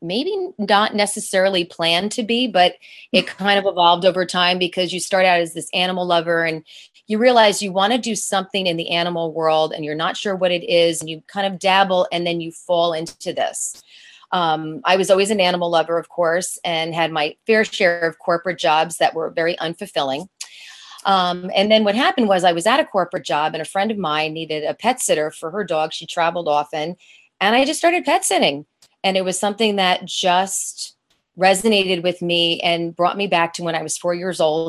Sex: female